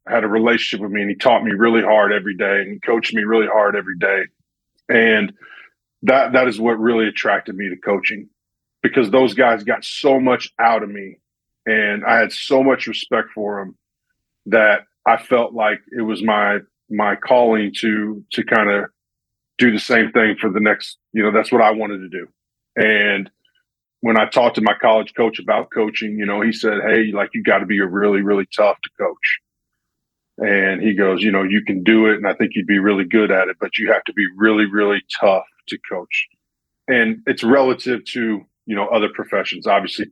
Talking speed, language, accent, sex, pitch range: 205 wpm, English, American, male, 100-115 Hz